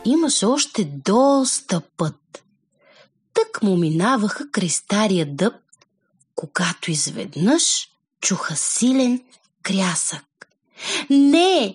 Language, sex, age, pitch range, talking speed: Bulgarian, female, 30-49, 175-275 Hz, 80 wpm